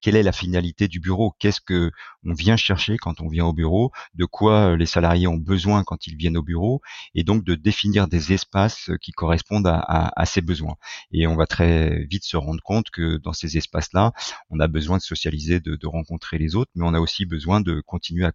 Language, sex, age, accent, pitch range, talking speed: French, male, 40-59, French, 85-100 Hz, 220 wpm